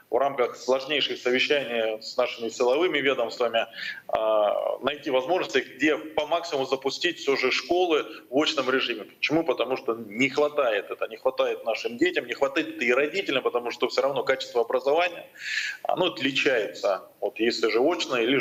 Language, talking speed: Russian, 155 wpm